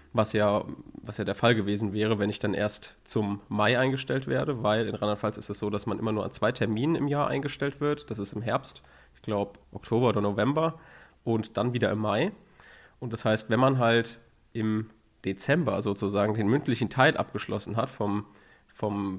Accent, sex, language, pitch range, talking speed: German, male, German, 105-130 Hz, 195 wpm